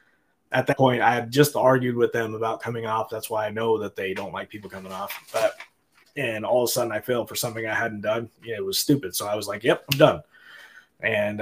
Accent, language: American, English